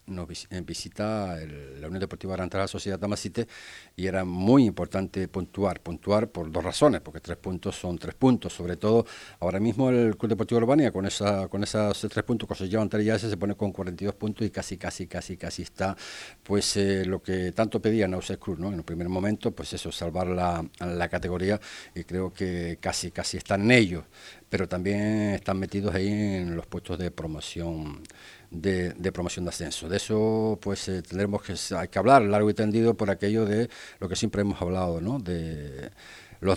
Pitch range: 90-110 Hz